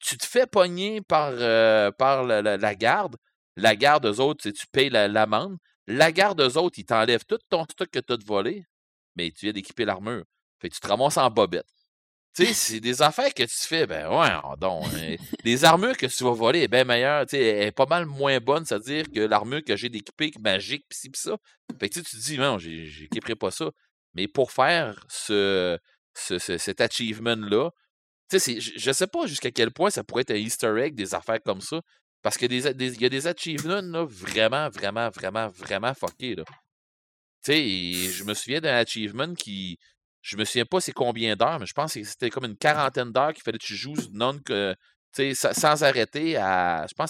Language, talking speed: French, 210 wpm